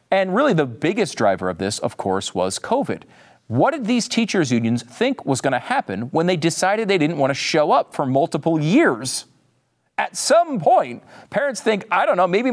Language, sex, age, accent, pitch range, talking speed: English, male, 40-59, American, 115-195 Hz, 200 wpm